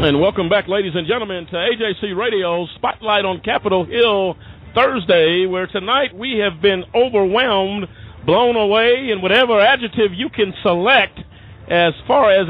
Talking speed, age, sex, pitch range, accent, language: 150 wpm, 50-69, male, 185-235 Hz, American, English